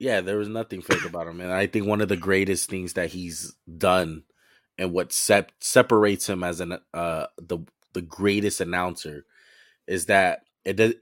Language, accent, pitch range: English, American, 90-115 Hz